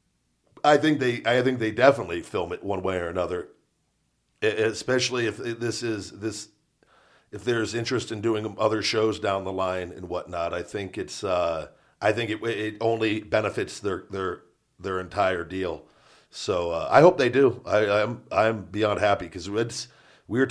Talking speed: 175 wpm